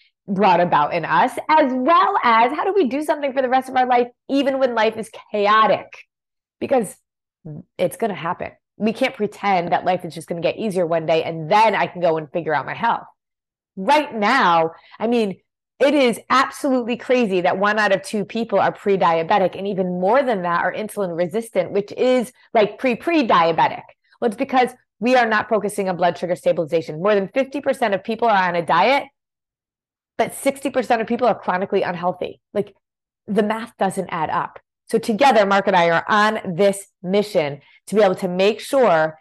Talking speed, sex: 195 wpm, female